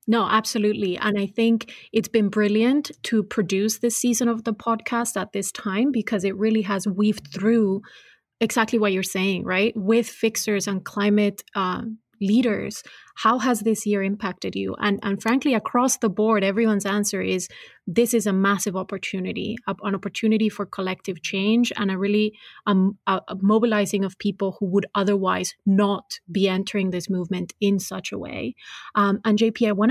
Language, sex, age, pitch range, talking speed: English, female, 30-49, 195-220 Hz, 170 wpm